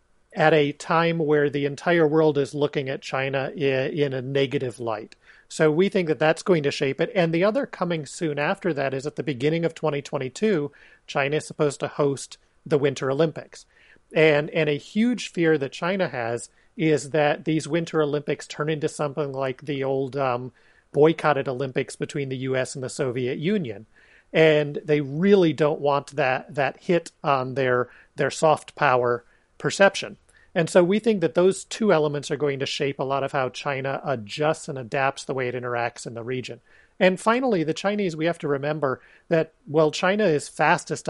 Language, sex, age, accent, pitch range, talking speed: English, male, 40-59, American, 135-165 Hz, 185 wpm